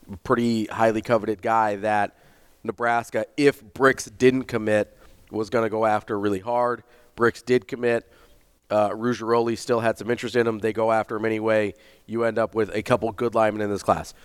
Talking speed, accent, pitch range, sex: 185 wpm, American, 105-120 Hz, male